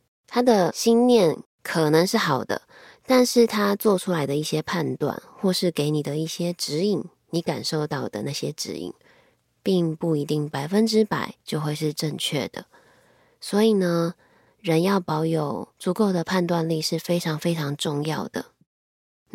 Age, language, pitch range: 20-39, Chinese, 150-205 Hz